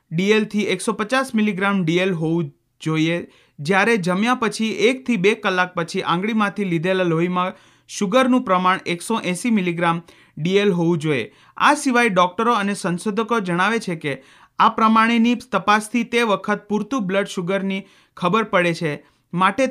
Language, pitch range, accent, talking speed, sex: Hindi, 175-225 Hz, native, 130 wpm, male